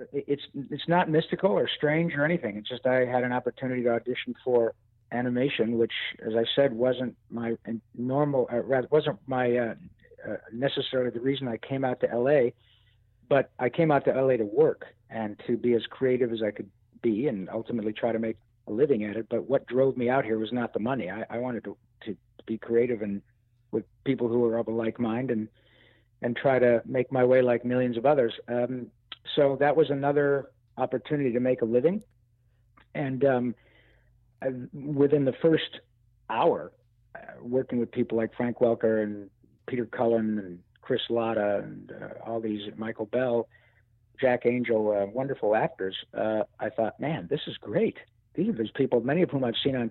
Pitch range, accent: 115-135 Hz, American